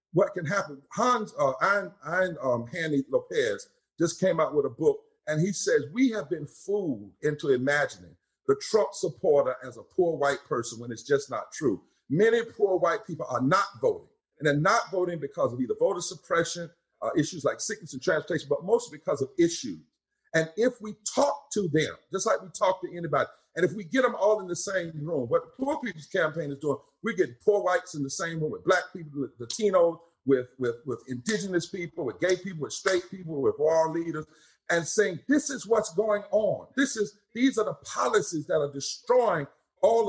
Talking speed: 200 wpm